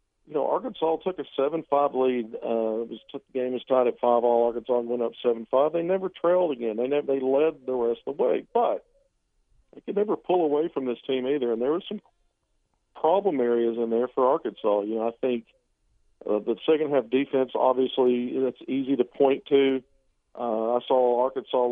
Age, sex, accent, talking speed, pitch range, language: 50-69, male, American, 200 wpm, 120-155 Hz, English